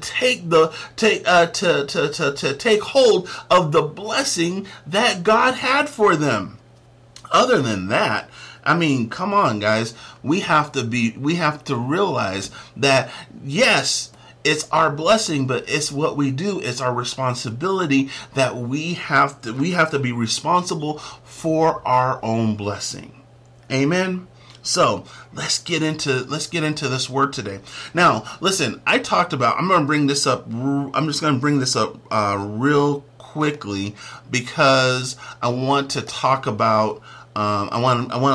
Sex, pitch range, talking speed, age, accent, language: male, 115-150 Hz, 160 wpm, 40-59, American, English